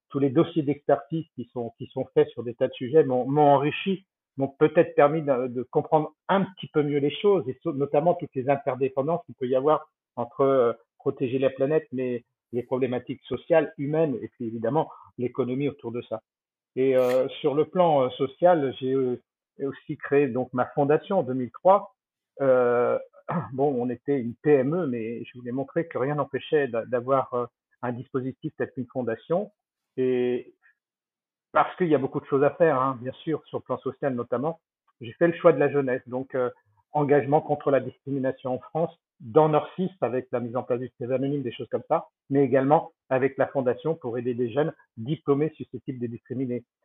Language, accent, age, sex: French, French, 50-69, male